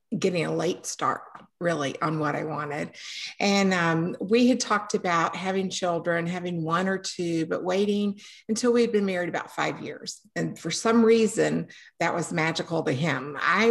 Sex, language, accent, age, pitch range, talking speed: female, English, American, 50-69, 160-205 Hz, 175 wpm